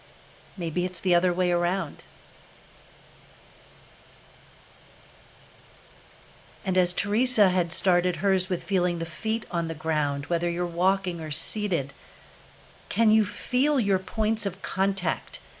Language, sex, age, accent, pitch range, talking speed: English, female, 50-69, American, 165-200 Hz, 120 wpm